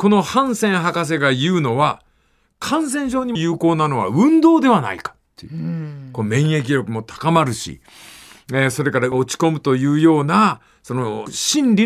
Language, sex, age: Japanese, male, 50-69